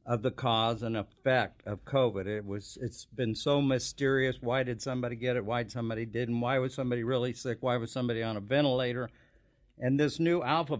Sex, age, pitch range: male, 60-79, 115-140 Hz